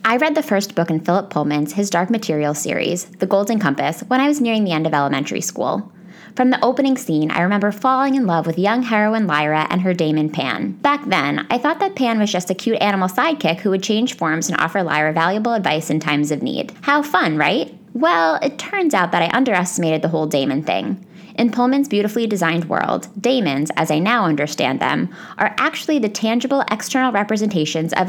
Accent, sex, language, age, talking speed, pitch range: American, female, English, 20-39, 210 wpm, 165-235 Hz